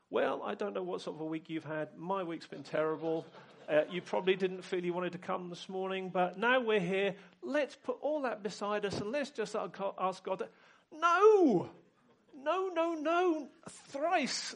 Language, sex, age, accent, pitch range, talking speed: English, male, 40-59, British, 200-280 Hz, 190 wpm